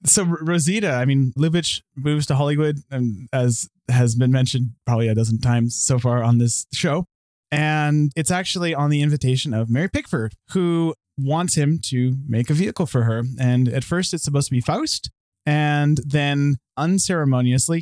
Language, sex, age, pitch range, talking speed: English, male, 20-39, 130-160 Hz, 170 wpm